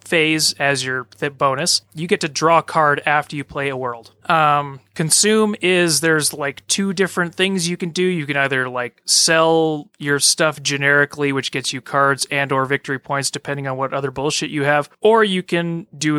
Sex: male